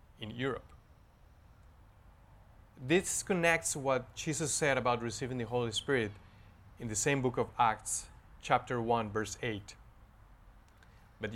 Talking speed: 120 wpm